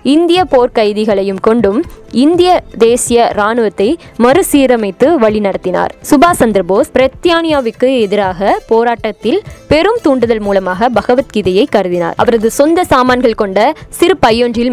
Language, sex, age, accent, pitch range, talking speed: Tamil, female, 20-39, native, 210-280 Hz, 75 wpm